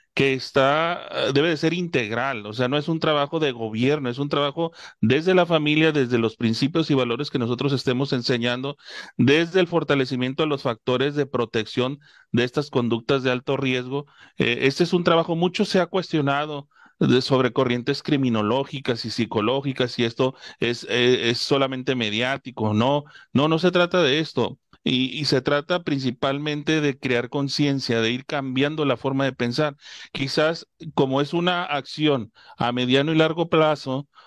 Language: Spanish